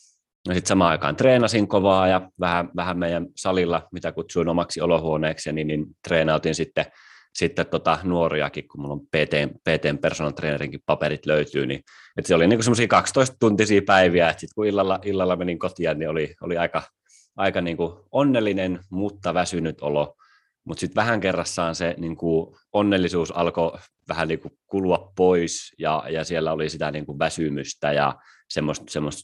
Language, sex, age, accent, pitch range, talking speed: Finnish, male, 30-49, native, 75-90 Hz, 150 wpm